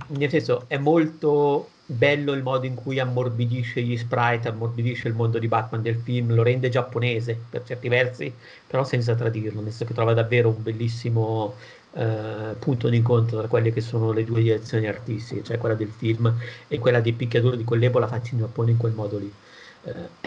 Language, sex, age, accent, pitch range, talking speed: Italian, male, 50-69, native, 115-125 Hz, 190 wpm